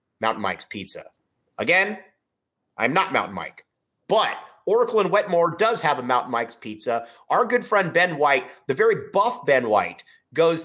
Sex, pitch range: male, 140-220 Hz